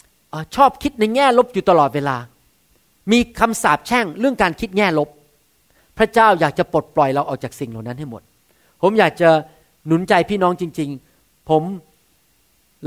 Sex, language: male, Thai